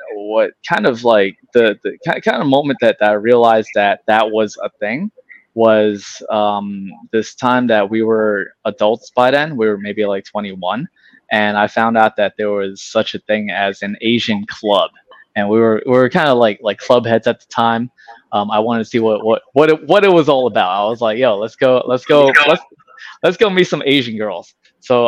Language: English